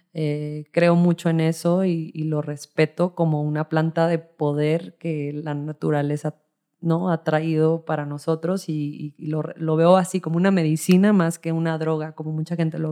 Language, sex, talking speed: English, female, 175 wpm